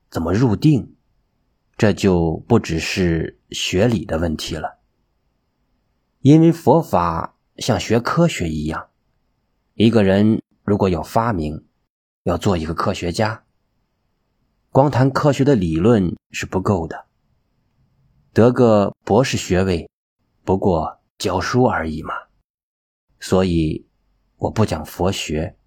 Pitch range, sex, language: 85-130 Hz, male, Chinese